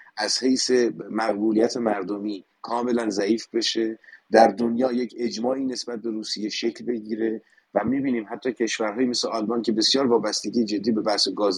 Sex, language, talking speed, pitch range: male, Persian, 150 wpm, 110-140 Hz